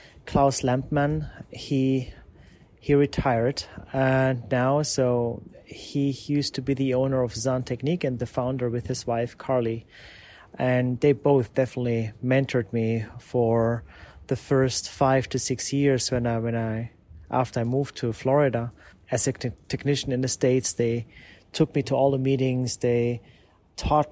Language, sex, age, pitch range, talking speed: English, male, 30-49, 115-135 Hz, 155 wpm